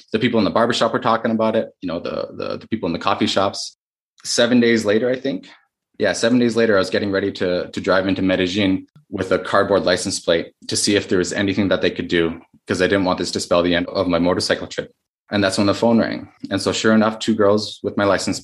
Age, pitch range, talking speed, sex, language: 20-39, 95-120 Hz, 260 wpm, male, English